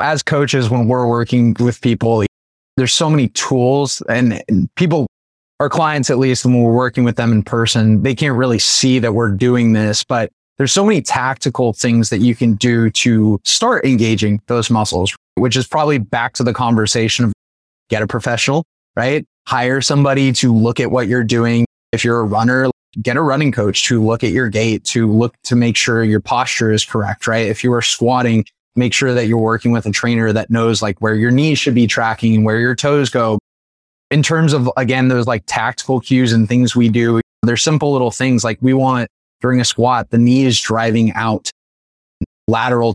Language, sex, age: English, male, 20-39